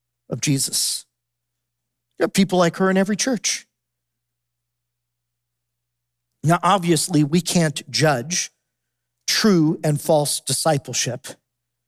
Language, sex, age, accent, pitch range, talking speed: English, male, 50-69, American, 120-175 Hz, 95 wpm